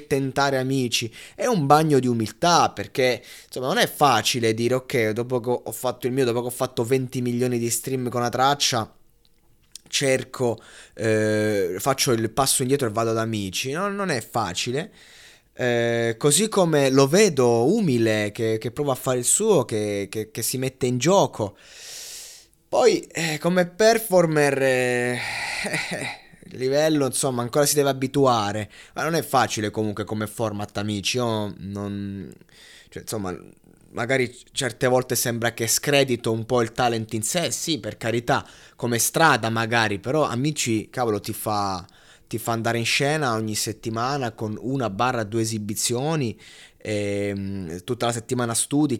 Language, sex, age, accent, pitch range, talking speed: Italian, male, 20-39, native, 110-135 Hz, 160 wpm